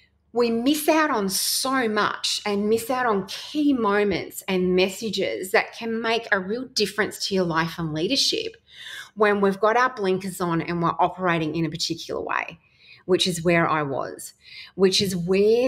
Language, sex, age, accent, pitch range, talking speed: English, female, 30-49, Australian, 180-240 Hz, 175 wpm